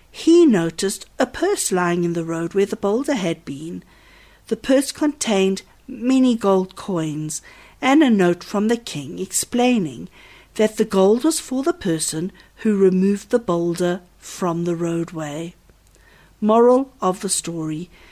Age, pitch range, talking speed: 60-79, 170-230 Hz, 145 wpm